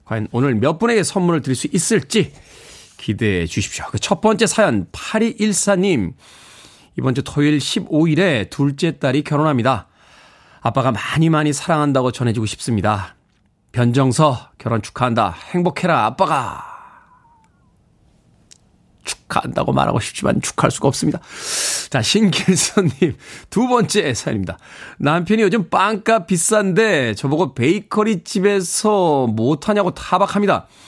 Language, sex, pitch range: Korean, male, 130-200 Hz